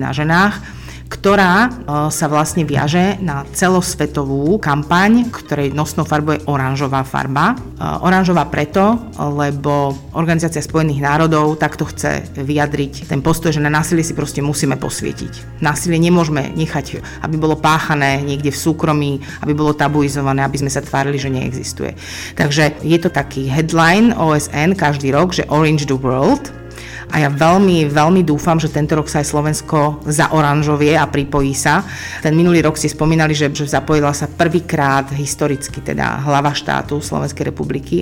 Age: 40-59